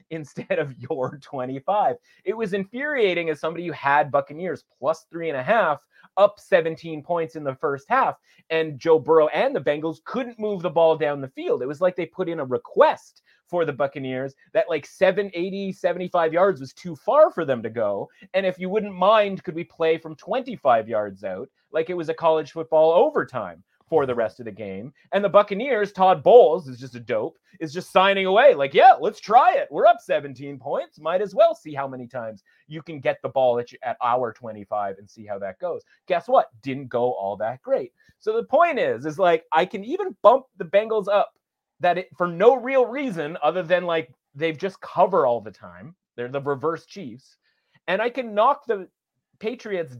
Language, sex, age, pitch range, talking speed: English, male, 30-49, 150-205 Hz, 210 wpm